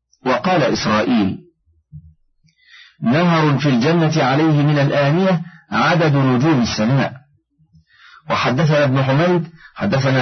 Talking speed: 90 wpm